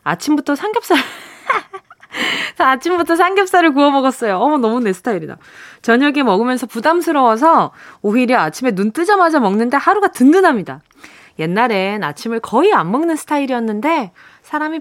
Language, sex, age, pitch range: Korean, female, 20-39, 215-330 Hz